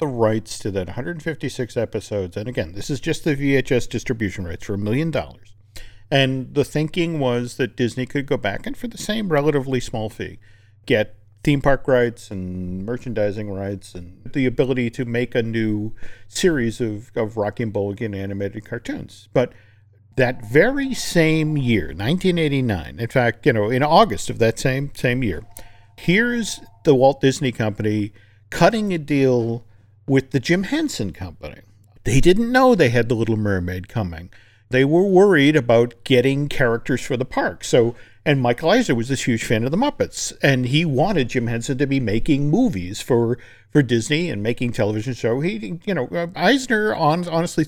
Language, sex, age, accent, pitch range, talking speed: English, male, 50-69, American, 105-145 Hz, 175 wpm